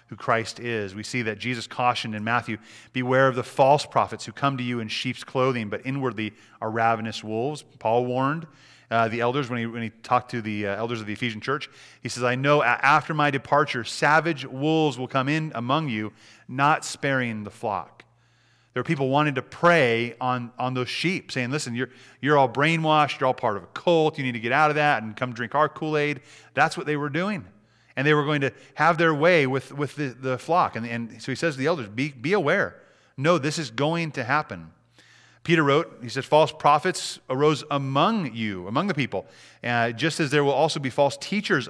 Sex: male